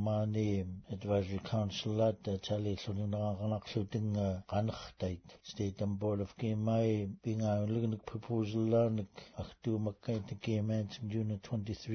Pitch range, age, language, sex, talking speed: 105-115 Hz, 60-79, English, male, 65 wpm